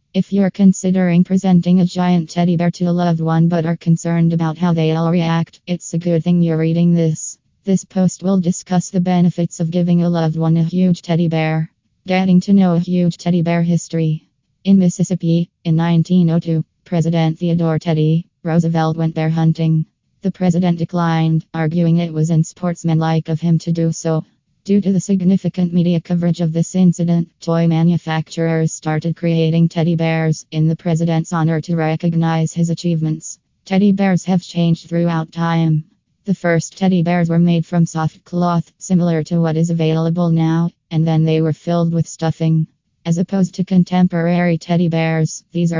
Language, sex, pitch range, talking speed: English, female, 160-175 Hz, 175 wpm